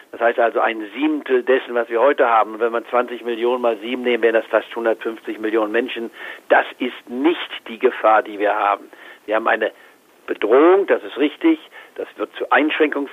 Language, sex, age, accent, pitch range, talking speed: German, male, 50-69, German, 120-155 Hz, 190 wpm